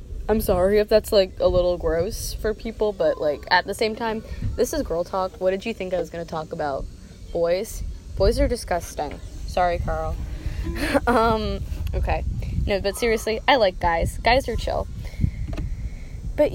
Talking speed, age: 175 wpm, 10-29